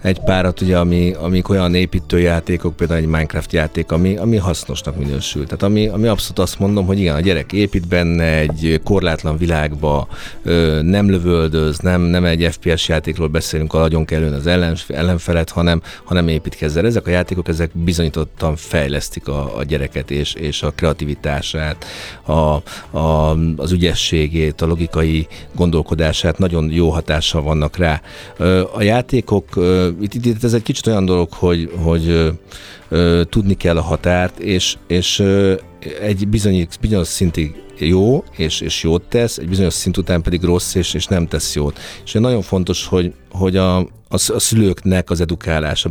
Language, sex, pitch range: Hungarian, male, 80-95 Hz